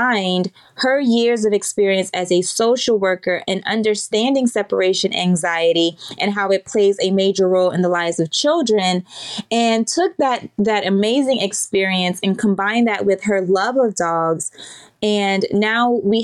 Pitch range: 190-230 Hz